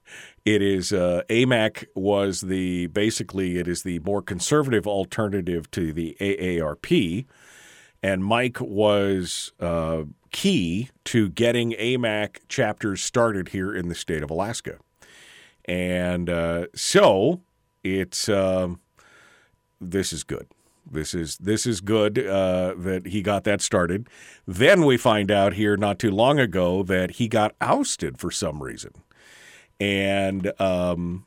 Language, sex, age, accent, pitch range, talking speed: English, male, 50-69, American, 90-120 Hz, 140 wpm